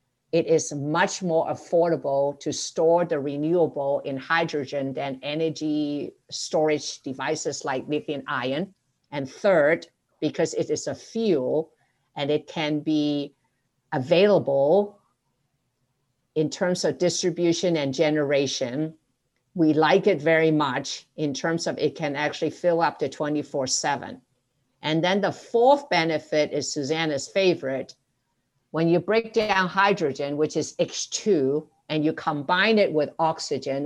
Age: 50-69